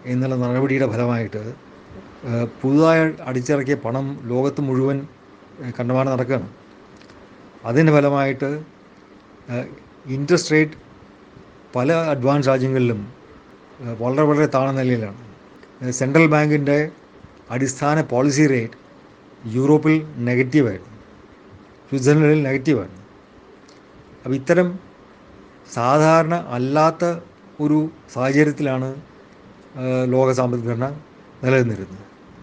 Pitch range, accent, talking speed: 120-150 Hz, native, 70 wpm